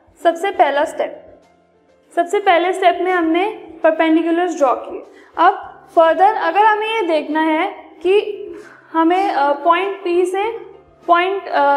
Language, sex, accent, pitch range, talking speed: English, female, Indian, 325-385 Hz, 120 wpm